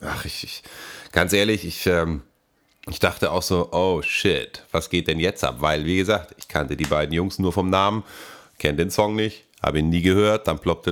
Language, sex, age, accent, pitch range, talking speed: German, male, 30-49, German, 80-100 Hz, 215 wpm